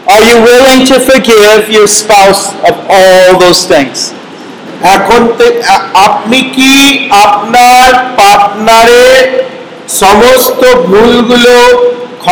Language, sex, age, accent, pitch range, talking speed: Bengali, male, 50-69, native, 190-240 Hz, 75 wpm